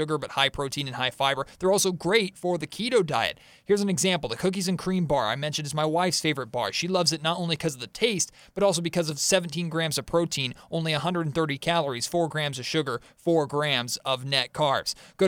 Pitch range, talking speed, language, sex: 145-185 Hz, 230 wpm, English, male